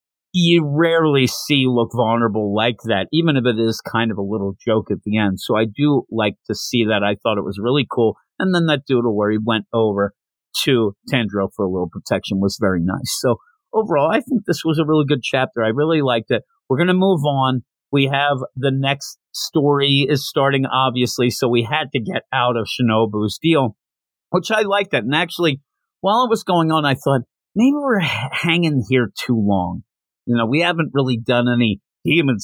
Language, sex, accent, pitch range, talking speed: English, male, American, 110-140 Hz, 205 wpm